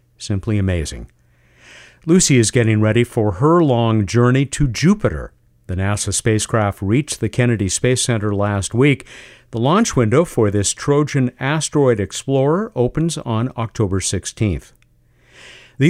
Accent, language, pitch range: American, English, 100-140 Hz